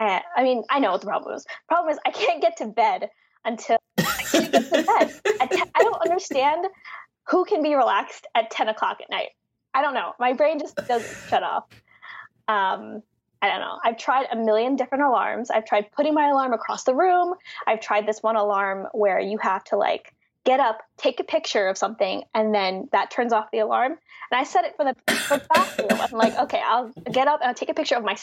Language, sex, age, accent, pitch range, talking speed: English, female, 10-29, American, 225-310 Hz, 225 wpm